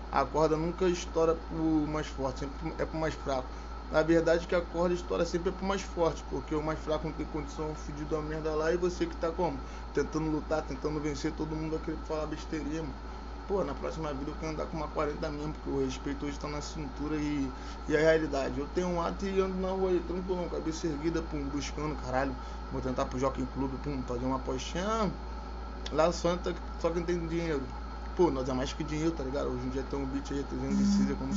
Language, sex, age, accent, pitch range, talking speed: English, male, 20-39, Brazilian, 140-175 Hz, 230 wpm